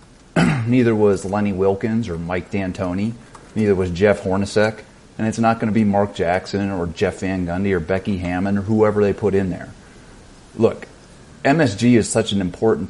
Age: 30-49